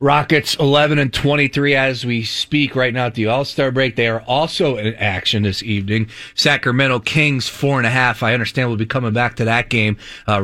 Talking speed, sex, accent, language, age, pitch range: 205 wpm, male, American, English, 30-49, 110-145 Hz